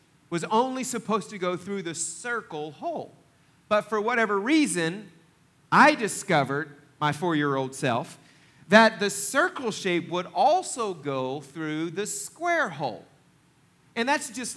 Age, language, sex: 40-59, English, male